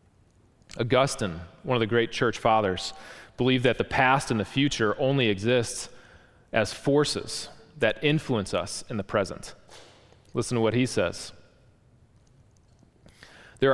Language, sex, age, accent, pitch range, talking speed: English, male, 30-49, American, 100-120 Hz, 130 wpm